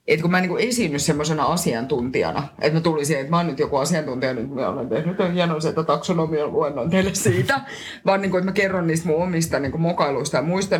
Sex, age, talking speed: female, 30-49, 200 wpm